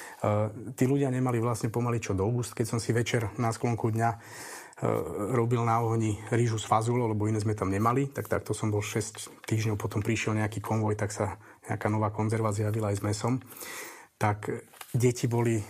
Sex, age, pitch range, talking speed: male, 40-59, 110-120 Hz, 200 wpm